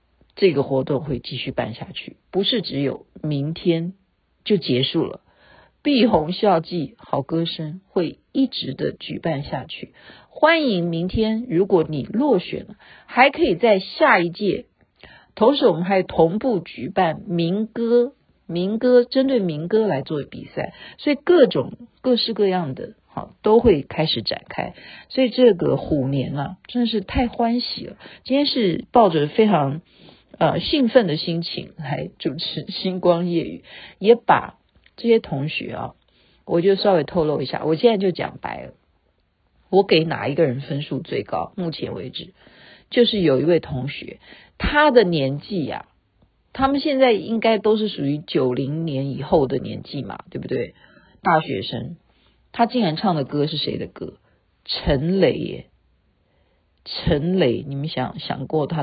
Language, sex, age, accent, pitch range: Chinese, female, 50-69, native, 145-225 Hz